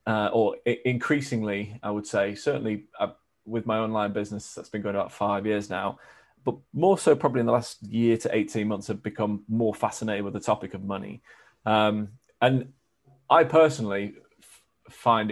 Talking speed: 175 wpm